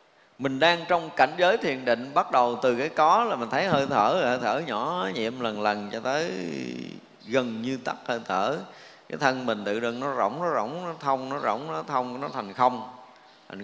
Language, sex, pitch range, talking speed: Vietnamese, male, 115-150 Hz, 215 wpm